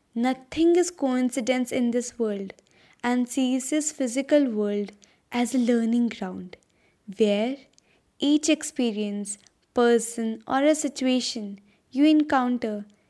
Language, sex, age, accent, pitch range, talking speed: English, female, 20-39, Indian, 230-285 Hz, 110 wpm